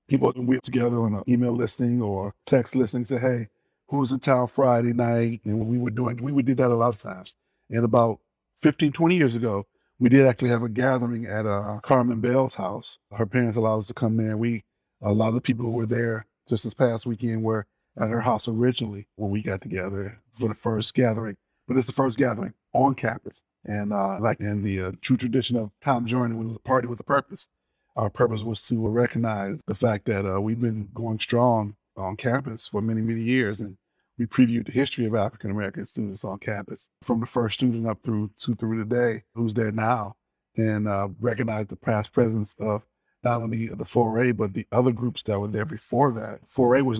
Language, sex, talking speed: English, male, 220 wpm